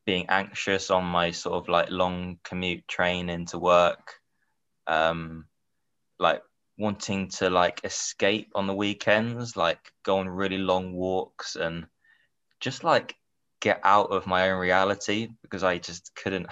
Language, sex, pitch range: English, male, 90-100 Hz